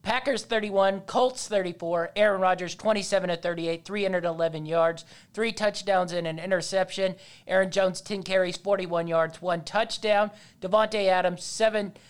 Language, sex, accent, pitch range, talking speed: English, male, American, 170-205 Hz, 125 wpm